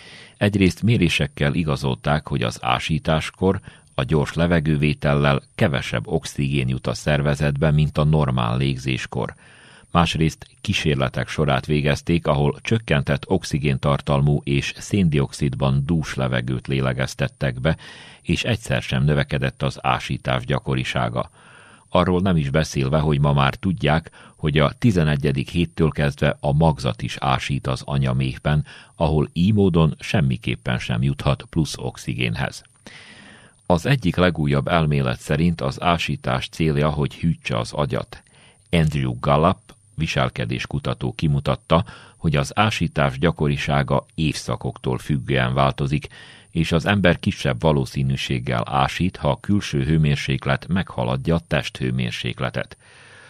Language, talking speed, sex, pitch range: Hungarian, 115 wpm, male, 70-85 Hz